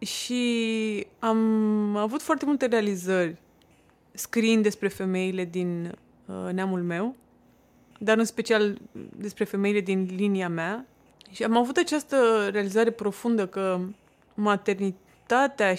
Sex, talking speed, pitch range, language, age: female, 110 wpm, 185-225 Hz, Romanian, 20-39